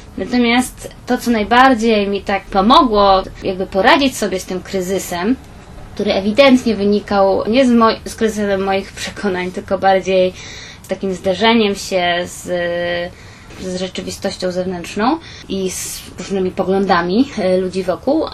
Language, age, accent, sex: Polish, 20-39, native, female